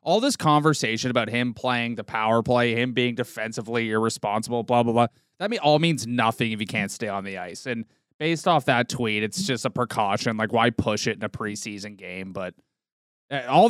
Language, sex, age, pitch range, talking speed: English, male, 20-39, 115-170 Hz, 205 wpm